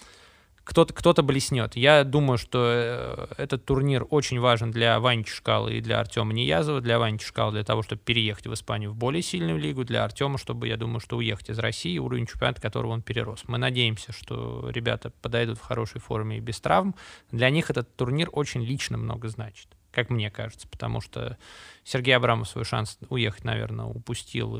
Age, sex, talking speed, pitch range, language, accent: 20-39, male, 185 wpm, 115-125 Hz, Russian, native